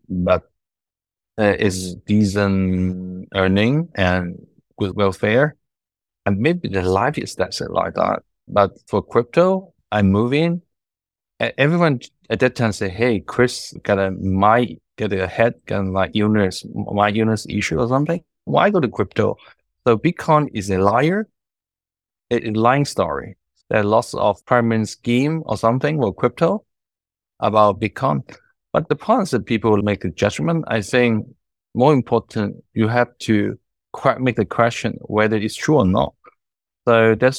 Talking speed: 155 wpm